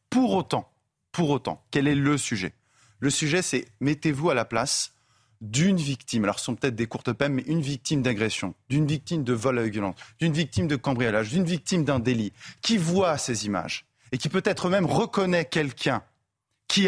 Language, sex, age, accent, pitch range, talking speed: French, male, 30-49, French, 115-160 Hz, 190 wpm